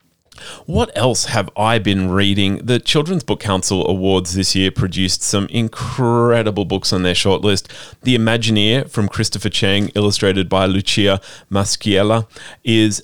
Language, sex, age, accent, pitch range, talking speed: English, male, 30-49, Australian, 95-120 Hz, 140 wpm